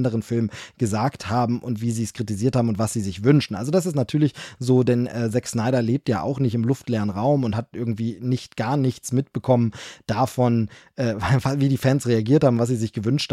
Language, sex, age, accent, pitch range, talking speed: German, male, 20-39, German, 115-135 Hz, 220 wpm